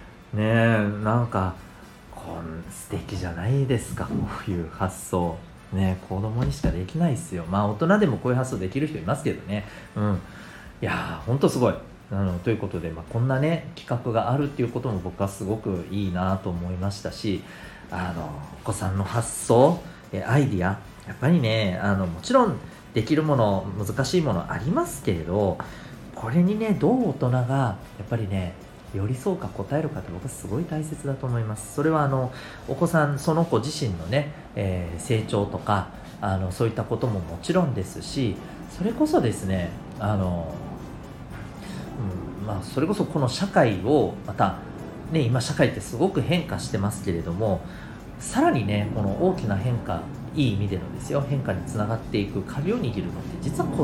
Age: 40-59